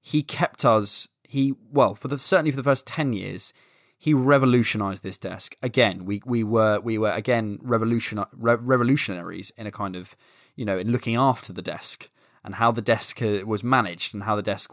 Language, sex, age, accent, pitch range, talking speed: English, male, 20-39, British, 105-140 Hz, 190 wpm